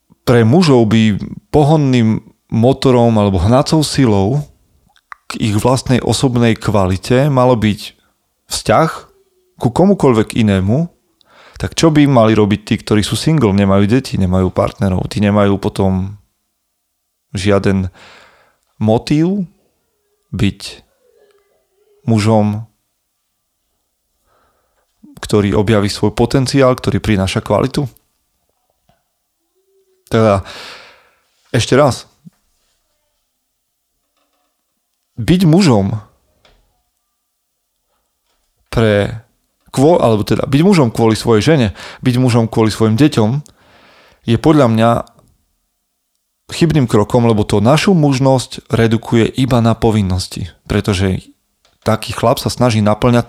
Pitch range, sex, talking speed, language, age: 105-135 Hz, male, 90 wpm, Slovak, 30-49